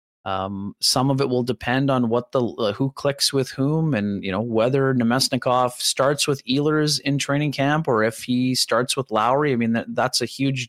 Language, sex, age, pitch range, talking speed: English, male, 30-49, 115-135 Hz, 210 wpm